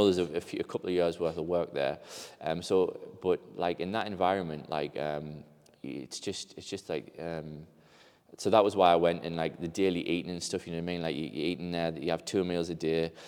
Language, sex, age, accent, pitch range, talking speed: English, male, 20-39, British, 75-90 Hz, 260 wpm